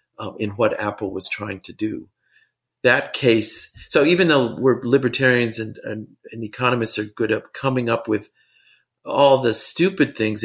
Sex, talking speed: male, 160 wpm